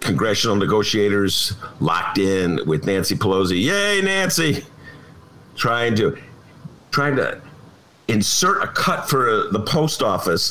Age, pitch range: 50-69, 105-155 Hz